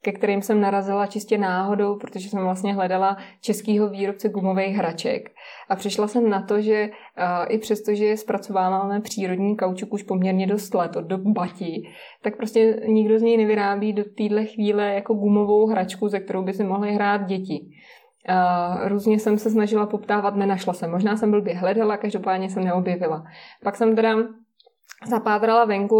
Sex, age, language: female, 20-39, Czech